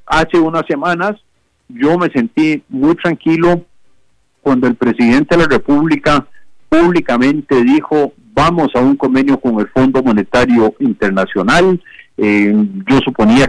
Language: Spanish